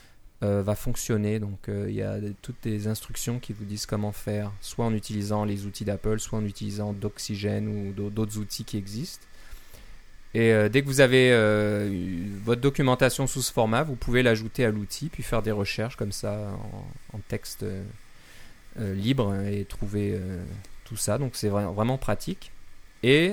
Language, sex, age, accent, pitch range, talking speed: French, male, 20-39, French, 100-120 Hz, 175 wpm